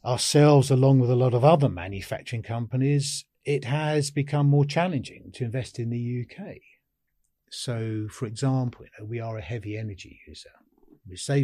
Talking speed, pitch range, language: 155 wpm, 120-170 Hz, English